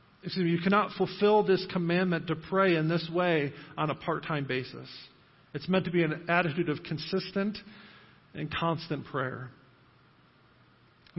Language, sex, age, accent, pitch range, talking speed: English, male, 40-59, American, 150-190 Hz, 145 wpm